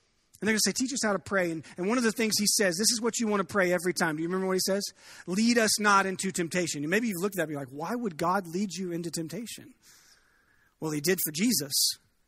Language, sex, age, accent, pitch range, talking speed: English, male, 40-59, American, 170-220 Hz, 290 wpm